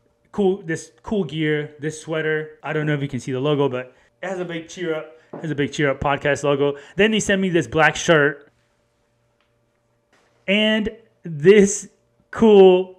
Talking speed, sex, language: 185 wpm, male, English